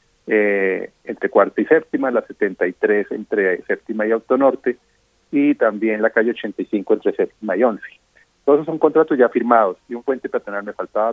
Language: Spanish